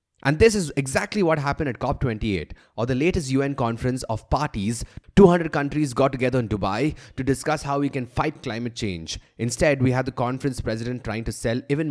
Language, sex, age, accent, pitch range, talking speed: English, male, 20-39, Indian, 110-145 Hz, 195 wpm